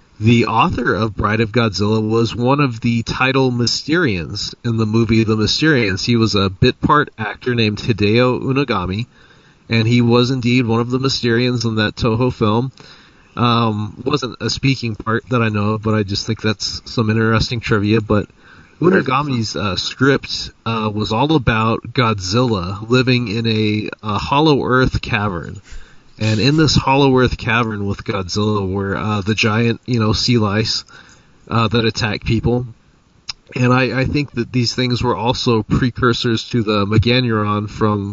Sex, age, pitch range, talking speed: male, 30-49, 110-125 Hz, 165 wpm